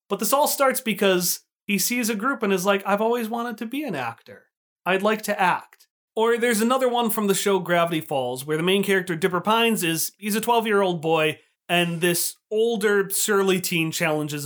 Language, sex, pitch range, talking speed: English, male, 165-230 Hz, 205 wpm